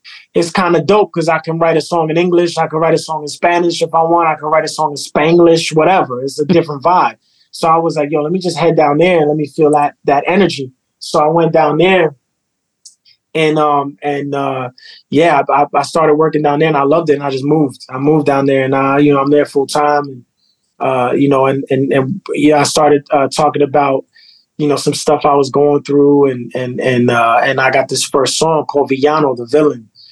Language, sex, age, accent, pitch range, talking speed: English, male, 20-39, American, 135-155 Hz, 245 wpm